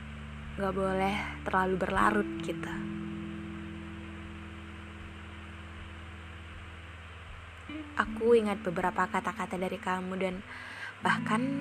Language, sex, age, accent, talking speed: Indonesian, female, 20-39, native, 70 wpm